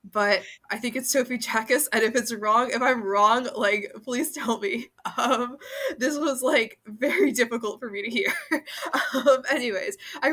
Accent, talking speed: American, 175 wpm